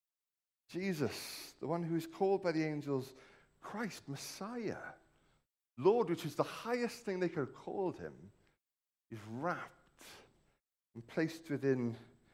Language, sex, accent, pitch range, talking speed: English, male, British, 110-160 Hz, 130 wpm